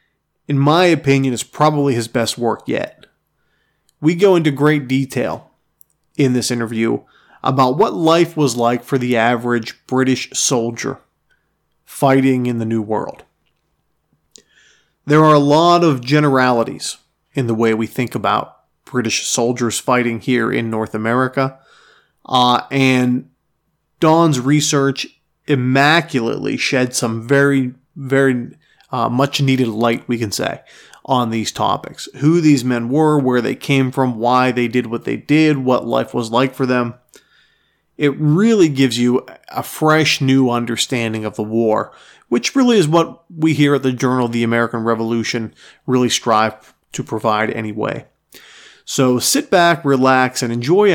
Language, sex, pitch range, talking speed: English, male, 120-145 Hz, 145 wpm